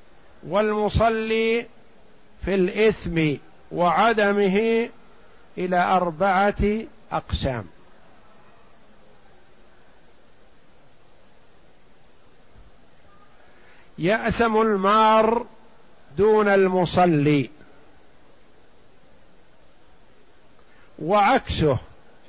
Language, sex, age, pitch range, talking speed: Arabic, male, 50-69, 180-225 Hz, 30 wpm